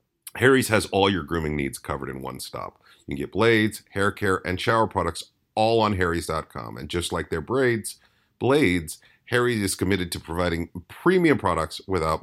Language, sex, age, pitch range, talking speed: English, male, 40-59, 80-105 Hz, 175 wpm